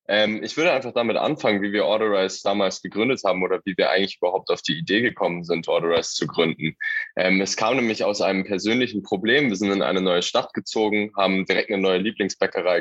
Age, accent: 10-29, German